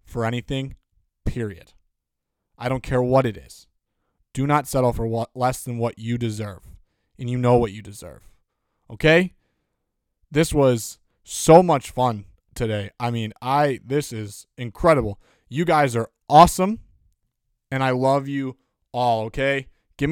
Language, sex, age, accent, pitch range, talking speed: English, male, 20-39, American, 120-150 Hz, 145 wpm